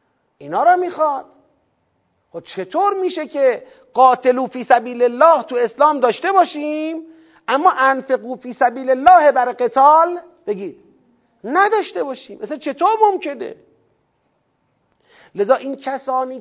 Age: 40-59